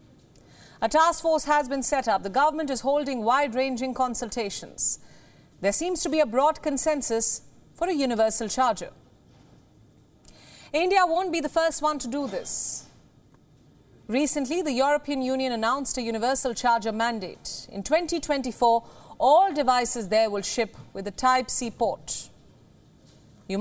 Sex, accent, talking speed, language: female, Indian, 135 wpm, English